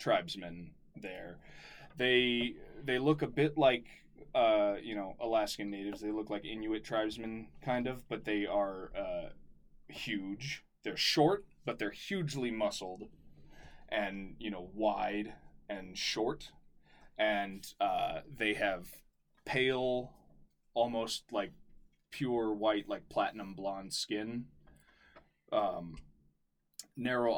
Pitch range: 95-125 Hz